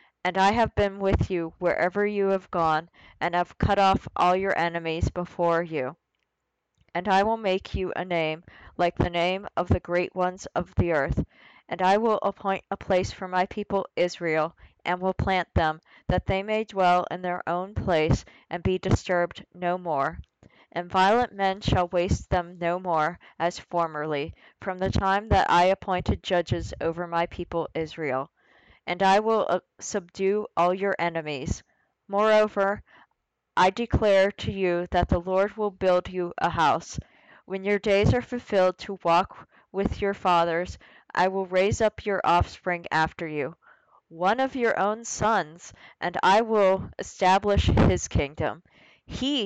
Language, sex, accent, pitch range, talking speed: English, female, American, 170-195 Hz, 165 wpm